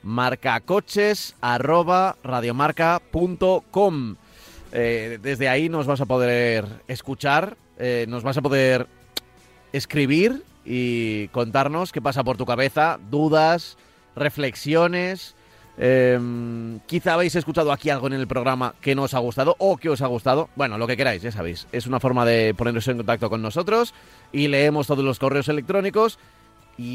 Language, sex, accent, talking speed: Spanish, male, Spanish, 145 wpm